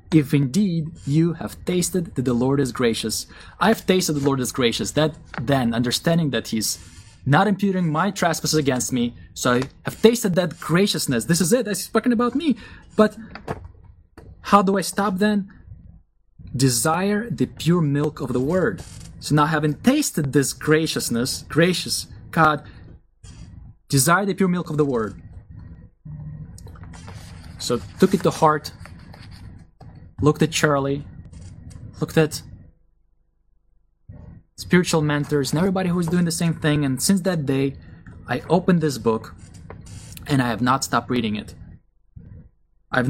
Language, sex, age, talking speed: English, male, 20-39, 145 wpm